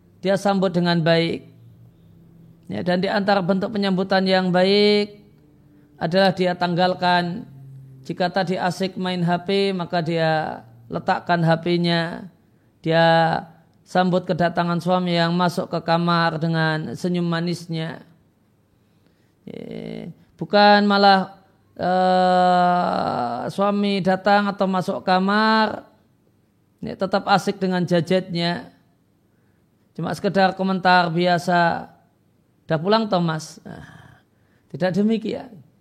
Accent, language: native, Indonesian